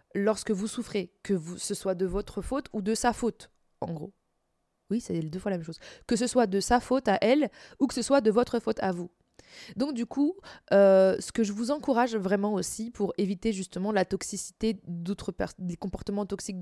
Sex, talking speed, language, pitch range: female, 220 wpm, French, 185-235 Hz